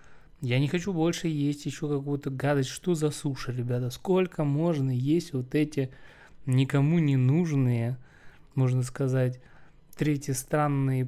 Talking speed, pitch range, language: 130 wpm, 125-150 Hz, Russian